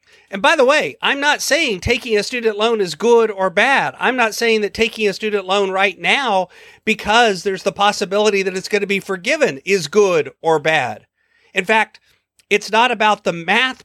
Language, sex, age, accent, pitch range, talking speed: English, male, 40-59, American, 180-220 Hz, 200 wpm